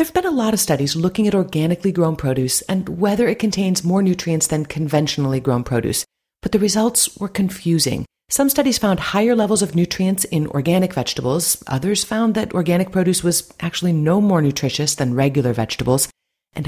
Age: 40-59